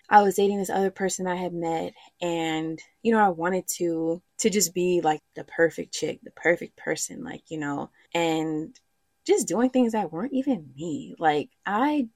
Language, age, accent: English, 20-39, American